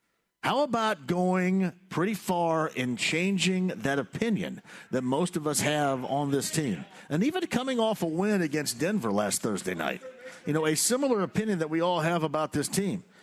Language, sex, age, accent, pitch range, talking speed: English, male, 50-69, American, 160-205 Hz, 180 wpm